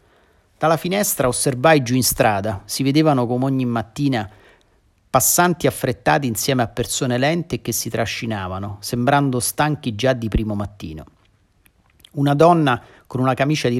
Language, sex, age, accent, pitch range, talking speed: Italian, male, 40-59, native, 100-130 Hz, 140 wpm